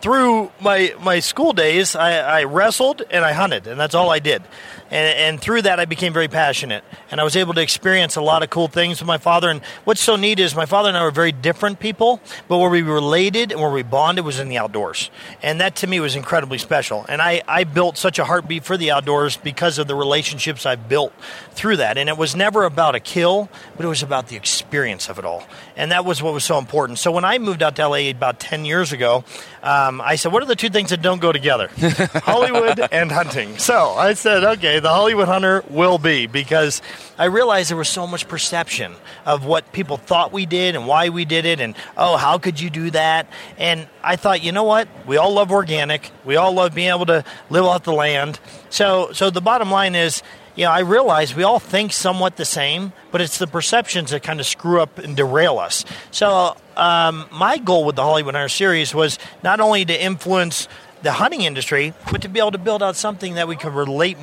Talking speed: 230 wpm